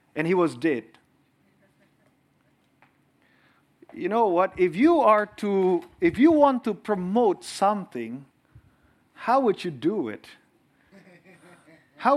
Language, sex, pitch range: English, male, 180-260 Hz